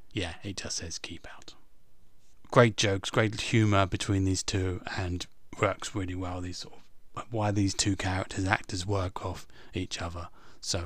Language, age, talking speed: English, 30-49, 165 wpm